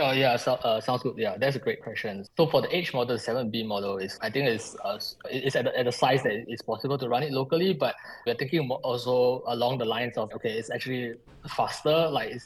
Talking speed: 250 wpm